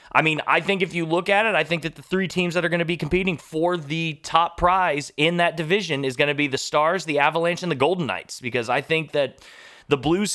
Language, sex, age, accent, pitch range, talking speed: English, male, 20-39, American, 145-180 Hz, 265 wpm